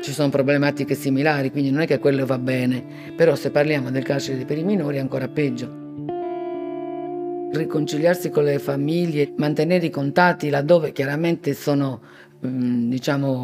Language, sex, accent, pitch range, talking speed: Italian, female, native, 135-165 Hz, 145 wpm